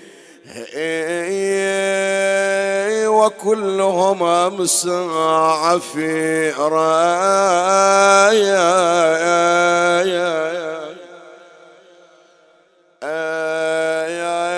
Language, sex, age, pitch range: Arabic, male, 50-69, 165-200 Hz